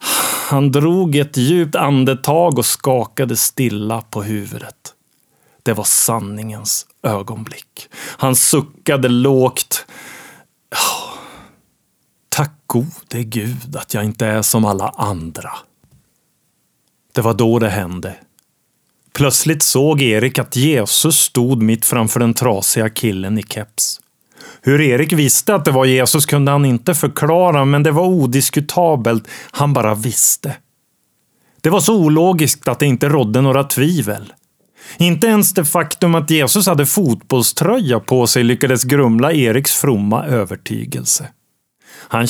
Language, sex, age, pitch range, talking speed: Swedish, male, 30-49, 115-150 Hz, 125 wpm